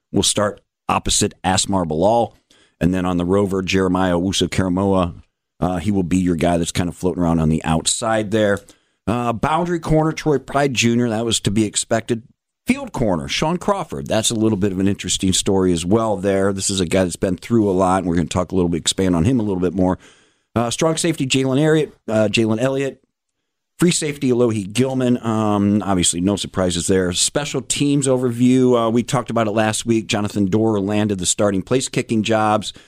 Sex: male